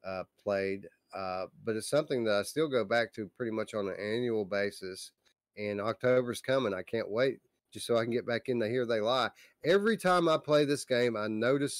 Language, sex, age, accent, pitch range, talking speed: English, male, 30-49, American, 105-150 Hz, 215 wpm